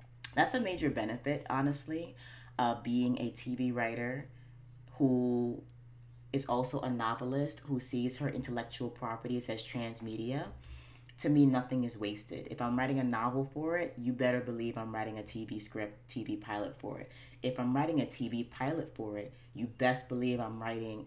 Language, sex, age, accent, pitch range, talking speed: English, female, 20-39, American, 115-130 Hz, 170 wpm